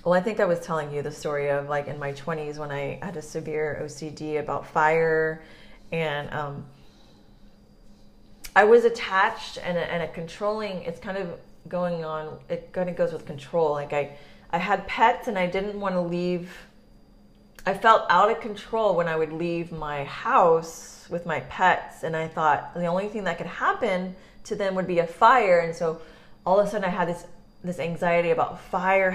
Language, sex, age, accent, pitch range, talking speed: English, female, 30-49, American, 155-185 Hz, 195 wpm